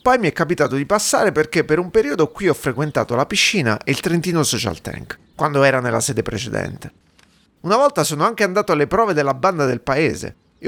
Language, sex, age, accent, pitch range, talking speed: Italian, male, 30-49, native, 125-195 Hz, 210 wpm